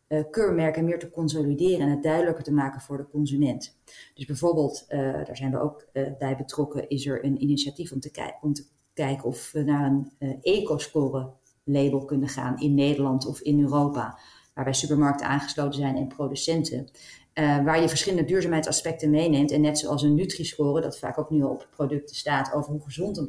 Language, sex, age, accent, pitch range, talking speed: Dutch, female, 40-59, Dutch, 140-160 Hz, 185 wpm